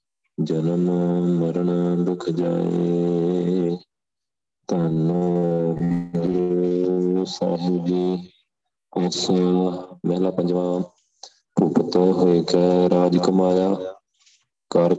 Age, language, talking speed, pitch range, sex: 30-49, Punjabi, 60 wpm, 85-95 Hz, male